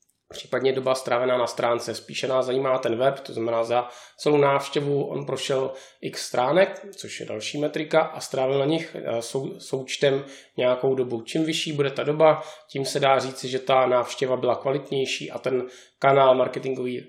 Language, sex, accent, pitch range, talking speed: Czech, male, native, 130-155 Hz, 170 wpm